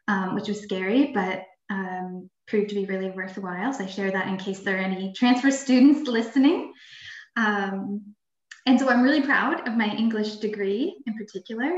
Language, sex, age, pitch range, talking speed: English, female, 10-29, 195-235 Hz, 180 wpm